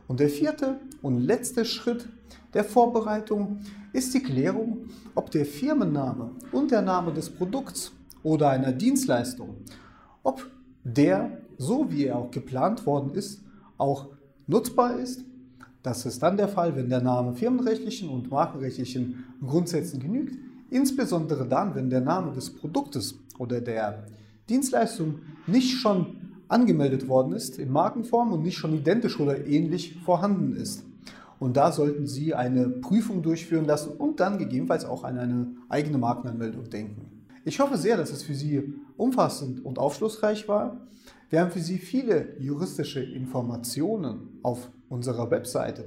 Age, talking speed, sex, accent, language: 30-49, 145 wpm, male, German, German